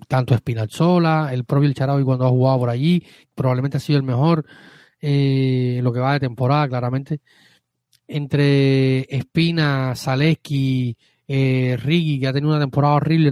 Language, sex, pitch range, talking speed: Spanish, male, 125-140 Hz, 160 wpm